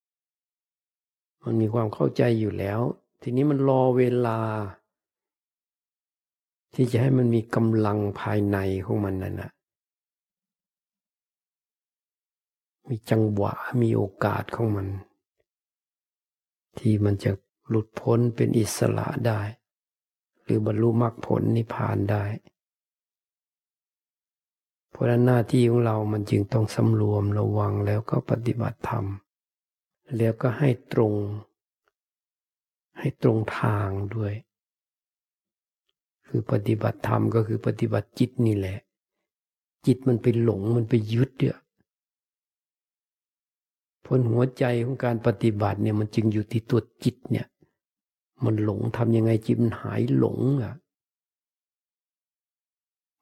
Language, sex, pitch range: Thai, male, 105-125 Hz